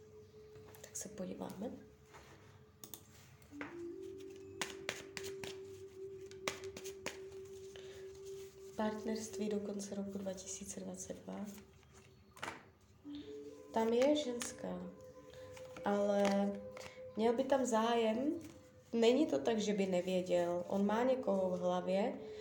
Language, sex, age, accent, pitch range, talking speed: Czech, female, 20-39, native, 185-255 Hz, 70 wpm